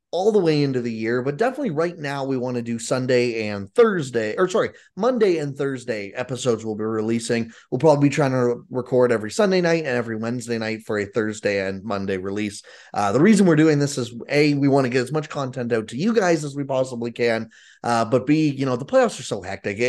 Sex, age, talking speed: male, 20-39, 235 wpm